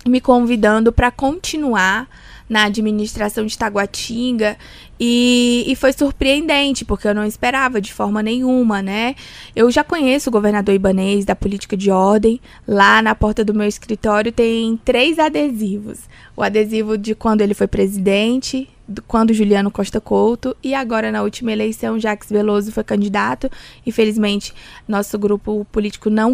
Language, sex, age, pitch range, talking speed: Portuguese, female, 20-39, 210-245 Hz, 145 wpm